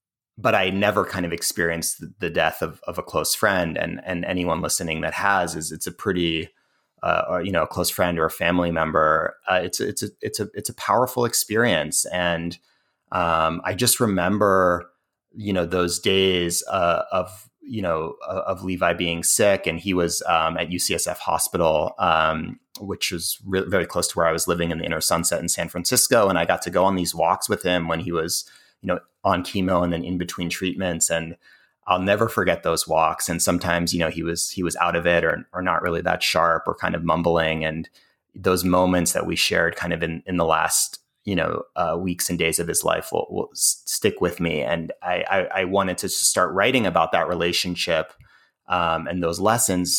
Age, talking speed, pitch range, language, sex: 30-49, 210 wpm, 85-90 Hz, English, male